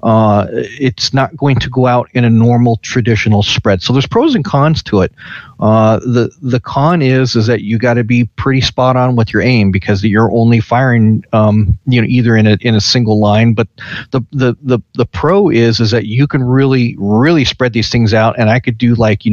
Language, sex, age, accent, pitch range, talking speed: English, male, 40-59, American, 110-125 Hz, 225 wpm